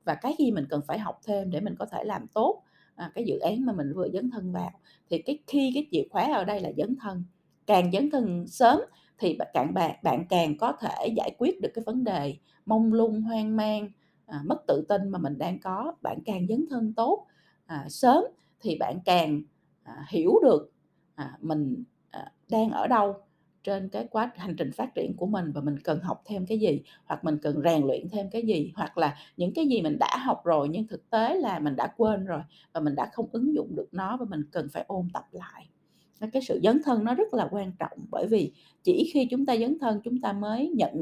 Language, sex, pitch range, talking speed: Vietnamese, female, 170-240 Hz, 235 wpm